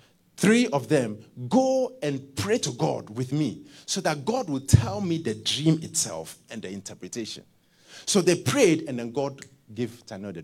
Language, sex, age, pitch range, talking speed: English, male, 50-69, 115-155 Hz, 180 wpm